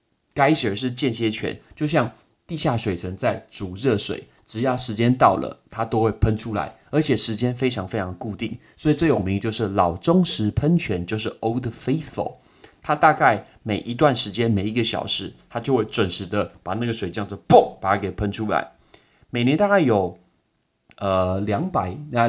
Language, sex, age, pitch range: Chinese, male, 30-49, 100-125 Hz